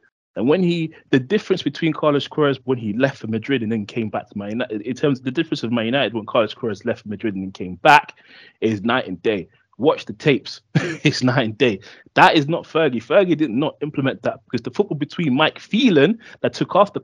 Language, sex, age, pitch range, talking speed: English, male, 20-39, 110-155 Hz, 235 wpm